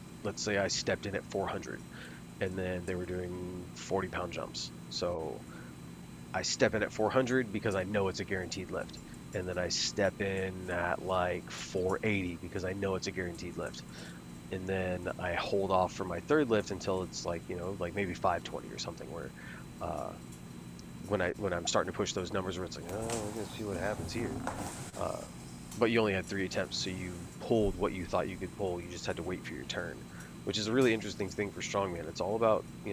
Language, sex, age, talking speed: English, male, 30-49, 215 wpm